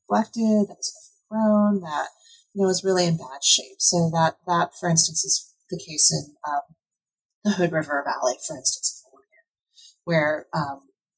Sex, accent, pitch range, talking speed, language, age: female, American, 160-205 Hz, 170 wpm, English, 30-49